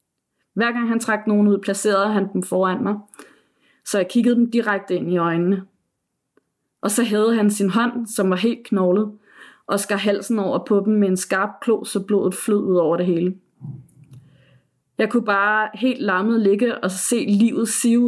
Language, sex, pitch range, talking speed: Danish, female, 190-225 Hz, 185 wpm